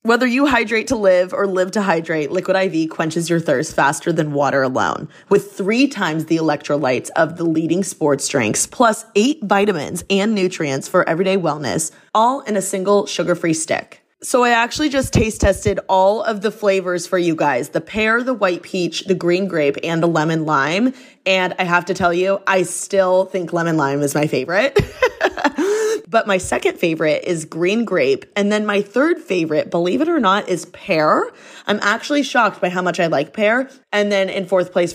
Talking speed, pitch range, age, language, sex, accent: 195 wpm, 165-220 Hz, 20-39, English, female, American